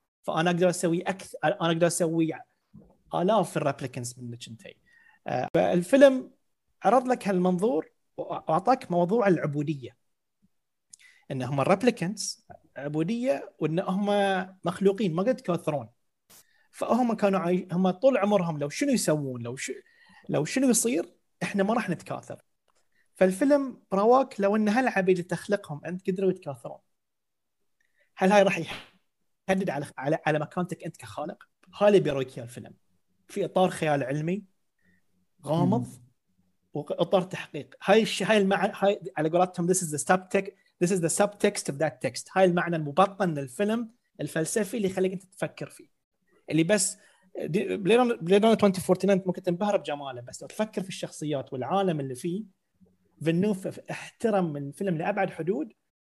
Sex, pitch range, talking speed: male, 155-200 Hz, 135 wpm